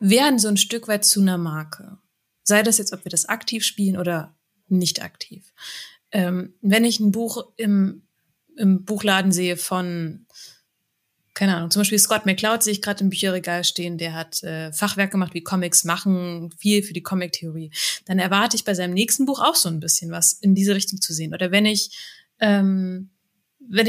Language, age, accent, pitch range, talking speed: German, 20-39, German, 185-220 Hz, 190 wpm